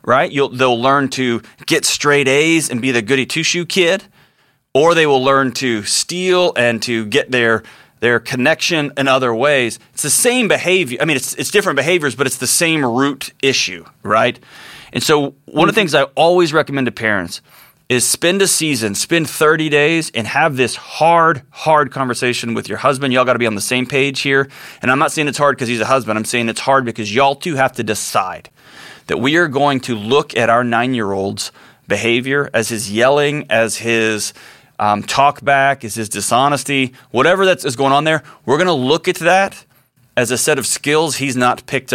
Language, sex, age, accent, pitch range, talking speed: English, male, 30-49, American, 120-150 Hz, 205 wpm